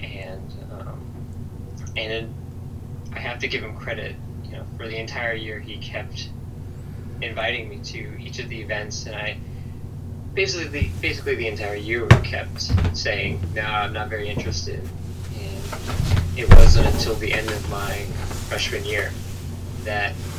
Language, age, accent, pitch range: English, 20-39, American, 95-115 Hz